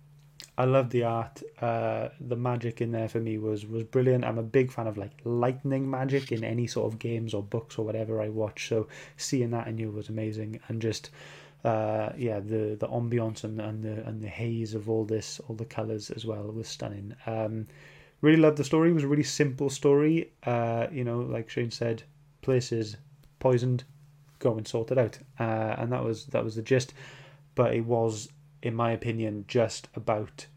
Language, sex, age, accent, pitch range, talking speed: English, male, 20-39, British, 110-140 Hz, 200 wpm